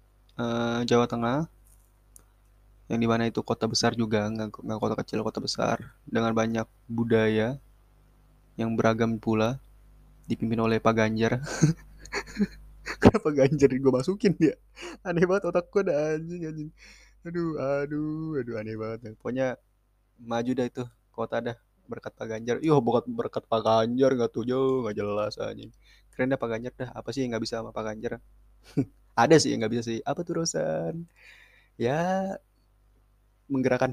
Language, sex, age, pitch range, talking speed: Indonesian, male, 20-39, 110-145 Hz, 145 wpm